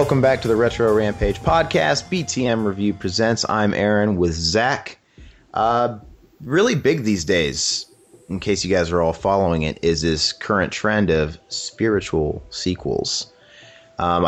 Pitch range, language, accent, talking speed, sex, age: 80-100 Hz, English, American, 145 wpm, male, 30-49